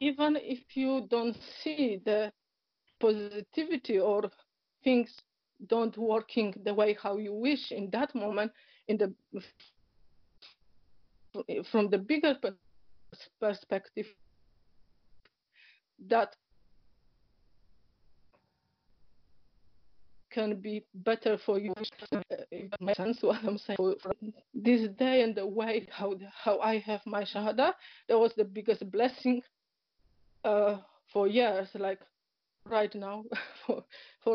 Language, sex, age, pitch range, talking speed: English, female, 50-69, 200-230 Hz, 105 wpm